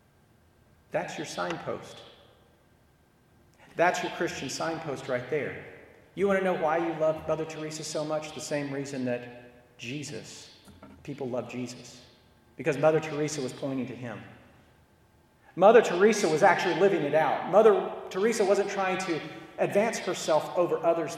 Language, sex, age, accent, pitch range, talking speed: English, male, 40-59, American, 125-165 Hz, 145 wpm